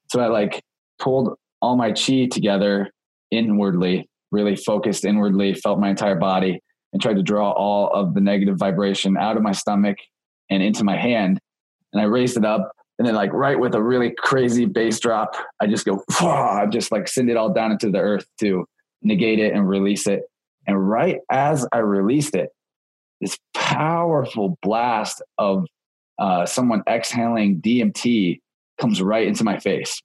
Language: English